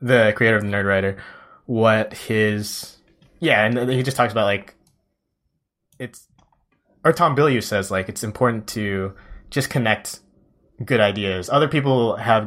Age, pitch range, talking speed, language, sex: 20-39, 100-120 Hz, 145 wpm, English, male